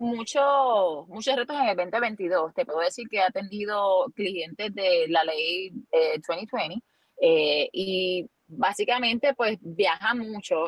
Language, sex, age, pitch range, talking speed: Spanish, female, 30-49, 185-280 Hz, 135 wpm